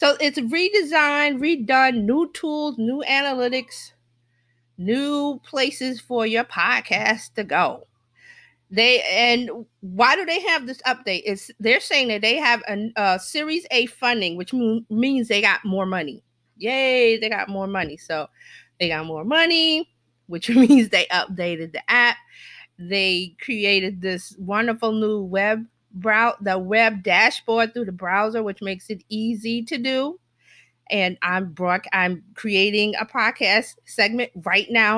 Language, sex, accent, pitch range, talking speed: English, female, American, 190-260 Hz, 150 wpm